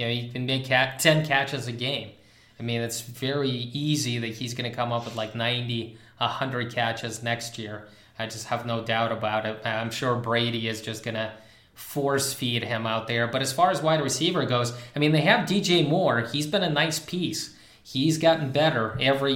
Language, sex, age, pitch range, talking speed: English, male, 20-39, 115-145 Hz, 205 wpm